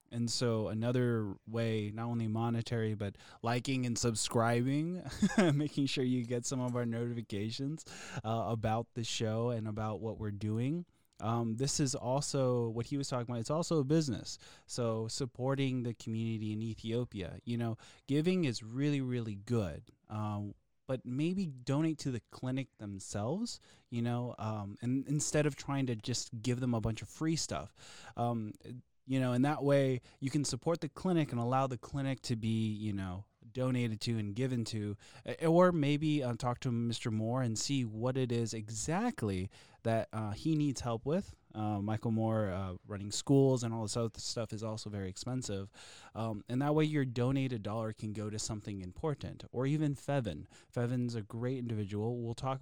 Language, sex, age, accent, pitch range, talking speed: English, male, 20-39, American, 110-135 Hz, 180 wpm